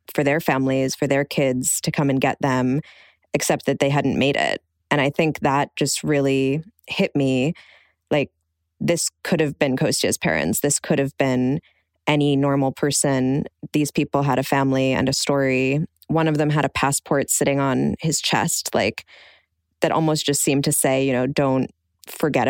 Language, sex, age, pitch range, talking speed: English, female, 20-39, 135-155 Hz, 180 wpm